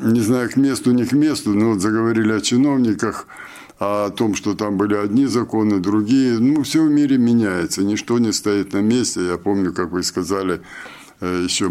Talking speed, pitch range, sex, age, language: 185 wpm, 105-125 Hz, male, 50-69, Russian